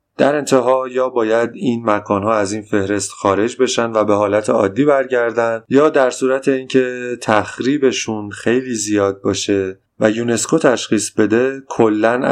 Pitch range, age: 105-130 Hz, 30-49